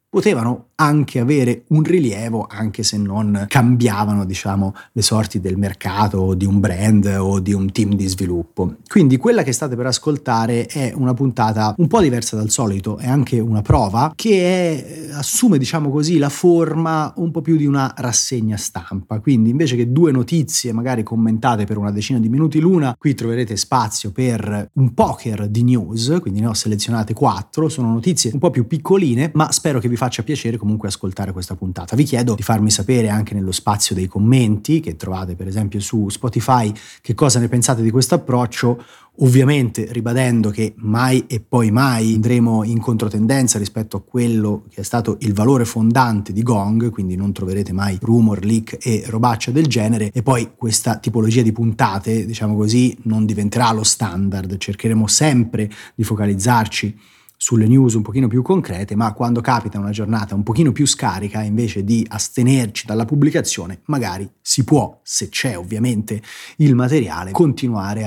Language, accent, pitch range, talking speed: Italian, native, 105-130 Hz, 175 wpm